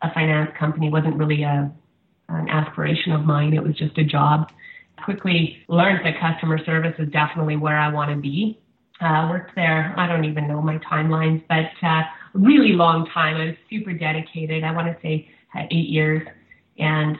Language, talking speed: English, 195 wpm